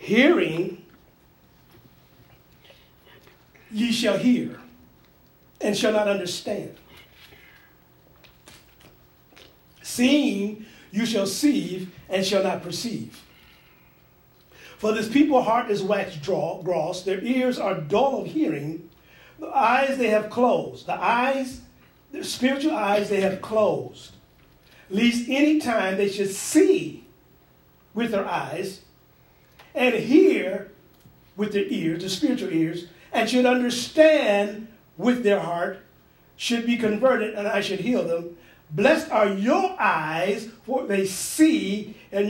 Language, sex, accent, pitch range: English, male, American, 175-245 Hz